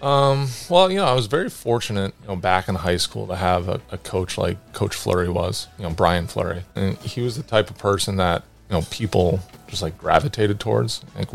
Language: Chinese